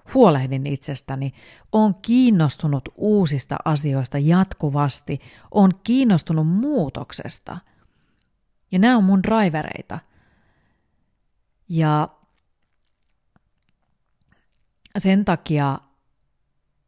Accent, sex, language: native, female, Finnish